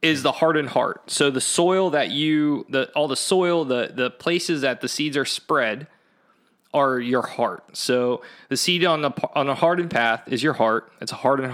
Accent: American